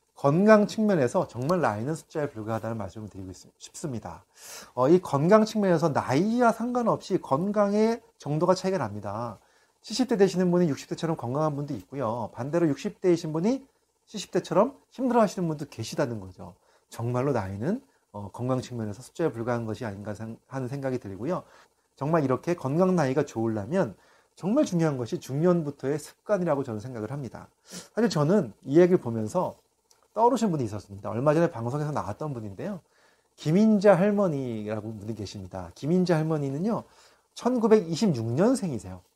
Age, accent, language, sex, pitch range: 30-49, native, Korean, male, 115-185 Hz